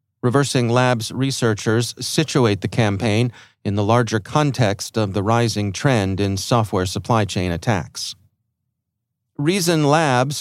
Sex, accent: male, American